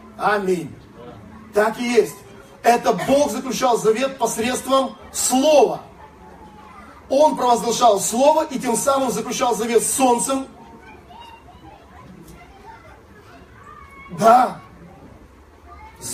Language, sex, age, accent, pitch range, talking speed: Russian, male, 40-59, native, 185-250 Hz, 80 wpm